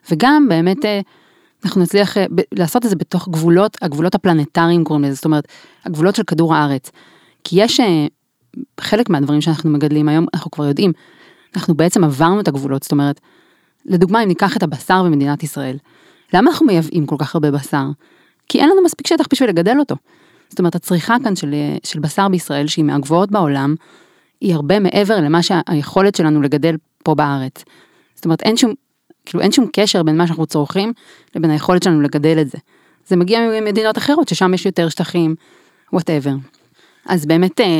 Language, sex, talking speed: English, female, 135 wpm